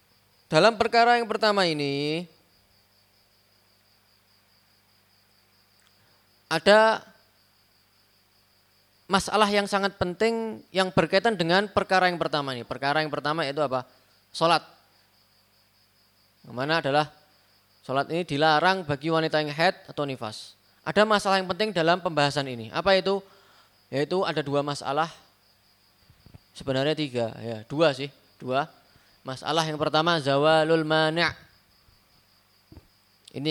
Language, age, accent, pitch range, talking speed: Indonesian, 20-39, native, 105-170 Hz, 105 wpm